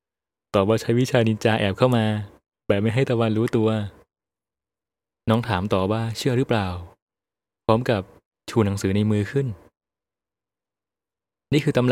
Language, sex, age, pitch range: Thai, male, 20-39, 100-120 Hz